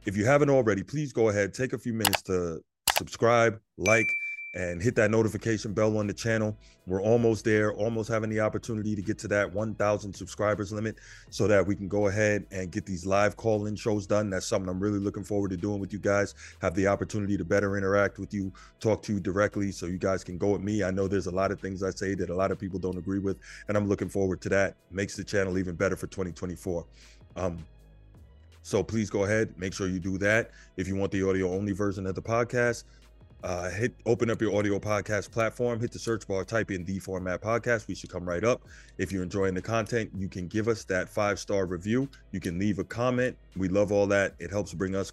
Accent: American